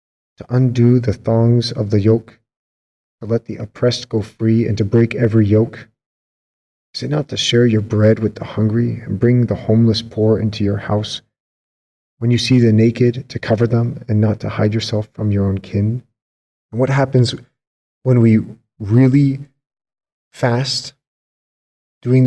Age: 40-59